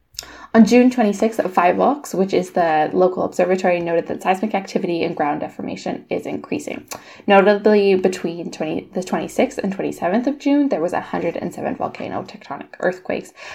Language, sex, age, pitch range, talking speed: English, female, 10-29, 170-220 Hz, 150 wpm